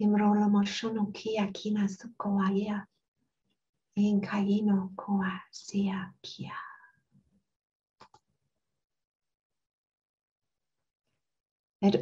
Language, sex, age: English, female, 50-69